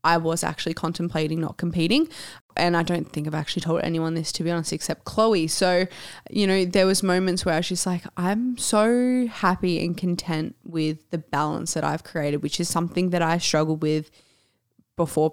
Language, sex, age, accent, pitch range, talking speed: English, female, 20-39, Australian, 155-180 Hz, 195 wpm